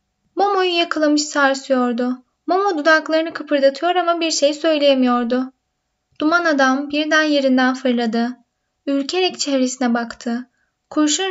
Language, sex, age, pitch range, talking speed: Turkish, female, 10-29, 255-315 Hz, 100 wpm